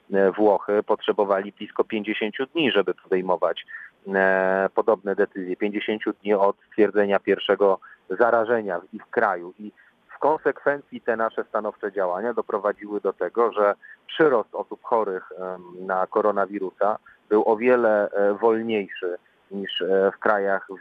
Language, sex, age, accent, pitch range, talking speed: Polish, male, 40-59, native, 95-105 Hz, 120 wpm